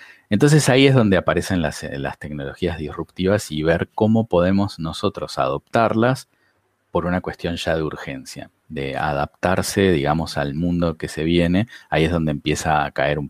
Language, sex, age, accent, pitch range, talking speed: Spanish, male, 30-49, Argentinian, 75-100 Hz, 165 wpm